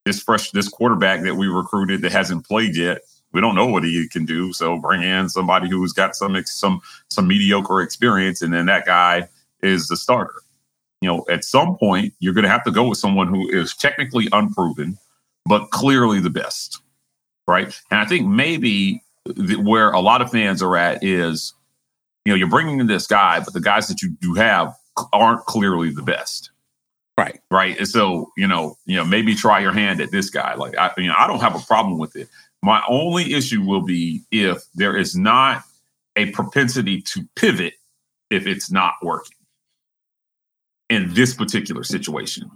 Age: 40-59